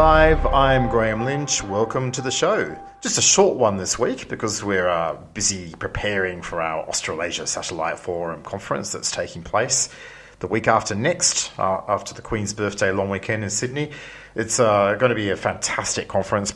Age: 40-59